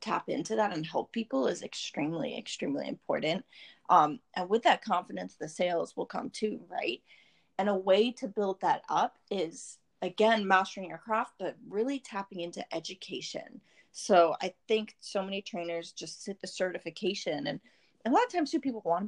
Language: English